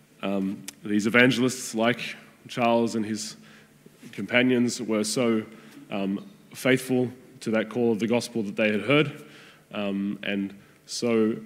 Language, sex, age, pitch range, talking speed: English, male, 20-39, 105-120 Hz, 130 wpm